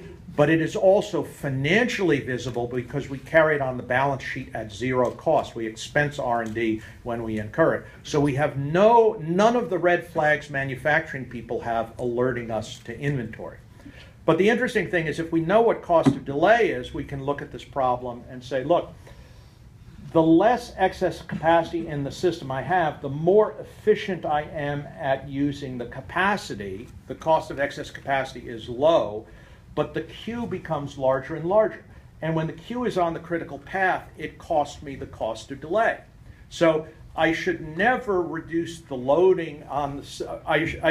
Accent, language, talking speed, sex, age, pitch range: American, English, 175 wpm, male, 50-69, 130-165 Hz